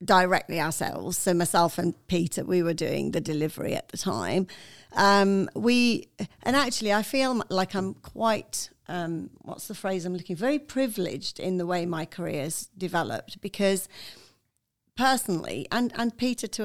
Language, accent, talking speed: English, British, 160 wpm